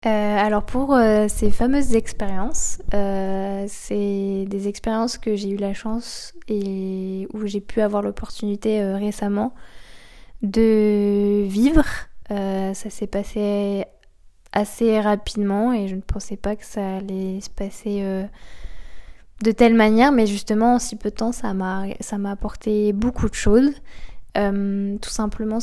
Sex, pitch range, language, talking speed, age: female, 200-220 Hz, French, 150 wpm, 10-29